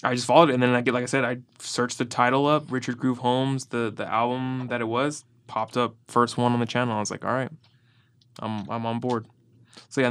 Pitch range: 110-125 Hz